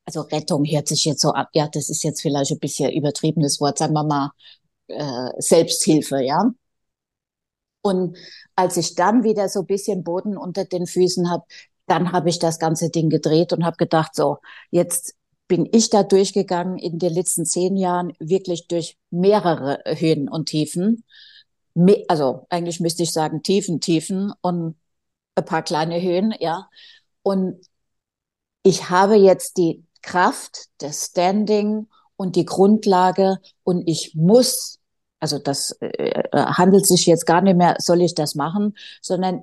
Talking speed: 155 wpm